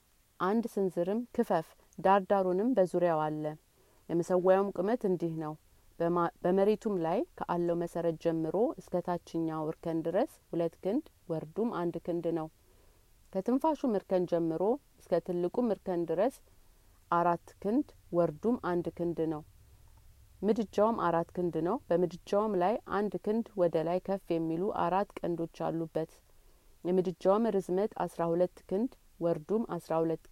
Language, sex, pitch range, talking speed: Amharic, female, 165-190 Hz, 115 wpm